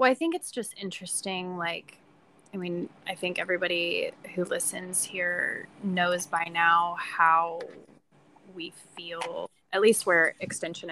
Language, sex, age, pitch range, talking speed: English, female, 20-39, 165-190 Hz, 135 wpm